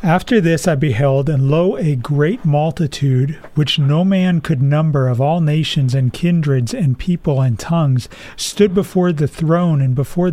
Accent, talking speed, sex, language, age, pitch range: American, 170 wpm, male, English, 40-59, 140-170 Hz